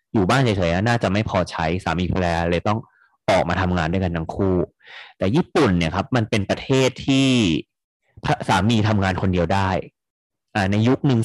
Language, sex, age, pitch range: Thai, male, 30-49, 90-115 Hz